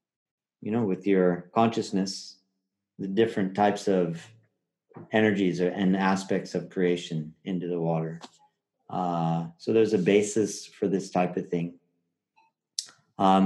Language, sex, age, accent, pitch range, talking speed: English, male, 40-59, American, 95-115 Hz, 125 wpm